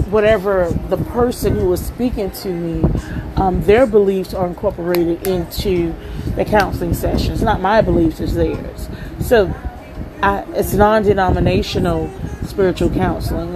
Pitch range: 165-205 Hz